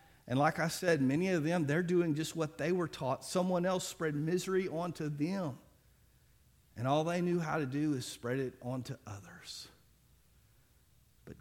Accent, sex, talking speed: American, male, 175 wpm